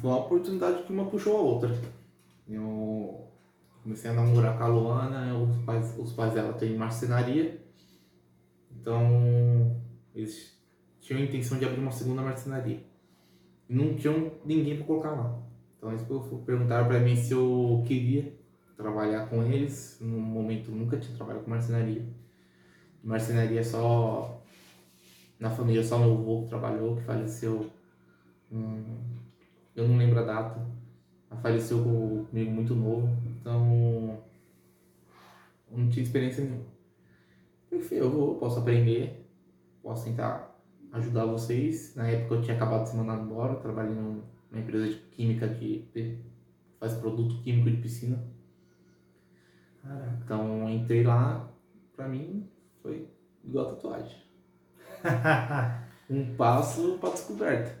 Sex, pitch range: male, 110-120 Hz